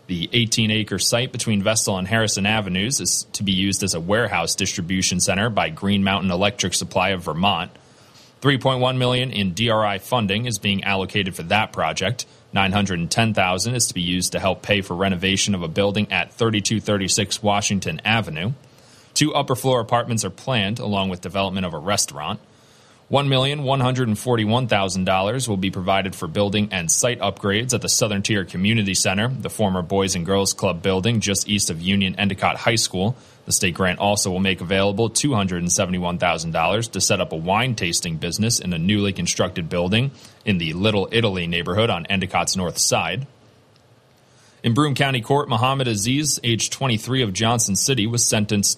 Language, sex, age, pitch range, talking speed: English, male, 30-49, 95-120 Hz, 165 wpm